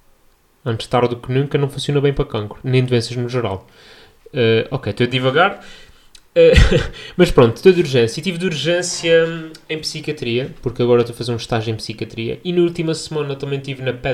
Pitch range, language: 115-135 Hz, Portuguese